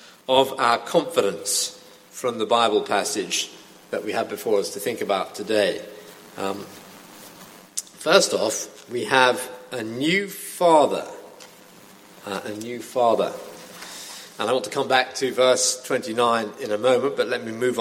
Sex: male